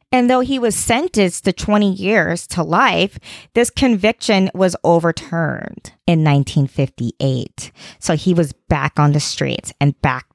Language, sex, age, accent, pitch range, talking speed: English, female, 20-39, American, 175-235 Hz, 145 wpm